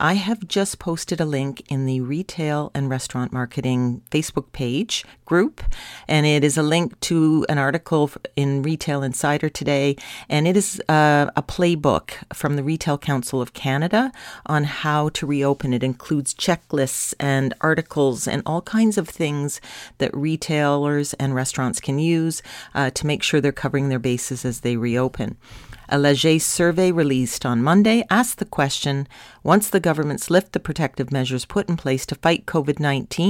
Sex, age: female, 40-59